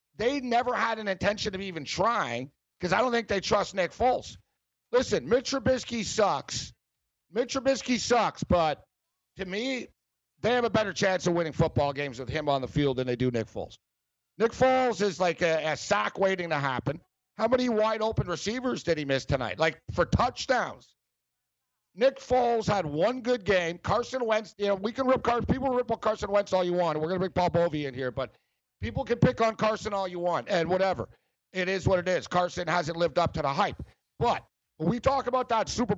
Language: English